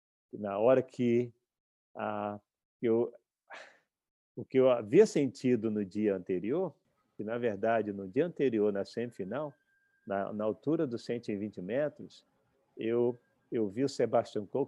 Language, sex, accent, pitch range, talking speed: Portuguese, male, Brazilian, 105-140 Hz, 135 wpm